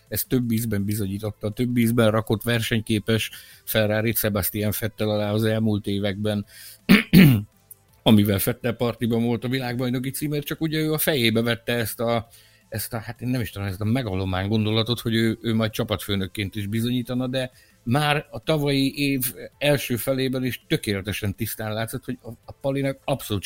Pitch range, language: 110-135 Hz, Hungarian